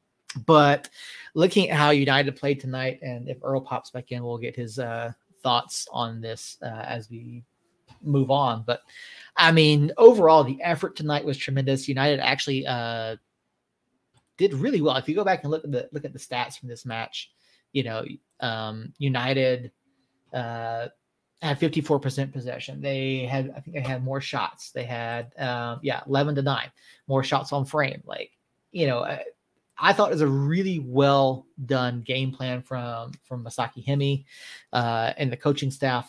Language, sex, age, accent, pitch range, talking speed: English, male, 30-49, American, 125-145 Hz, 175 wpm